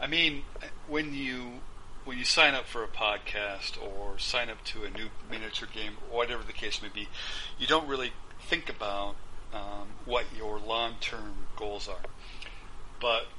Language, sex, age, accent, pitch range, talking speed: English, male, 40-59, American, 100-115 Hz, 165 wpm